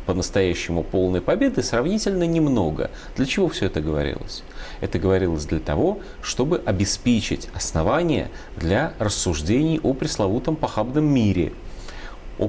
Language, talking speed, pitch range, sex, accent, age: Russian, 115 wpm, 90-120 Hz, male, native, 30-49